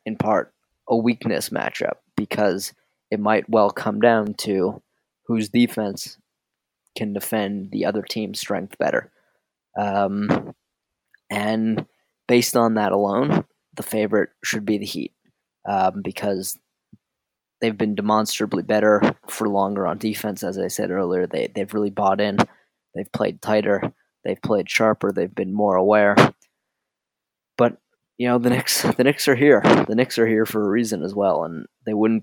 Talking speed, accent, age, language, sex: 150 wpm, American, 20-39, English, male